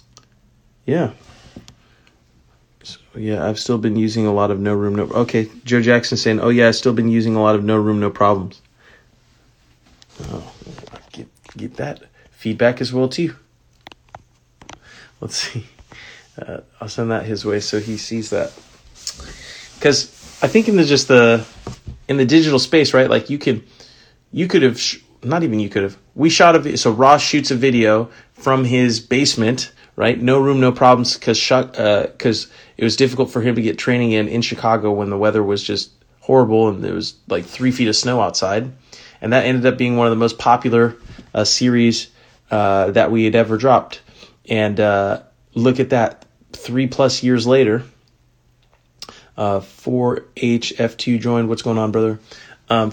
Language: English